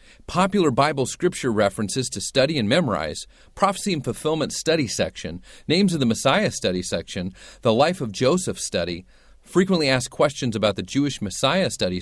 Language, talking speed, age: English, 160 wpm, 40-59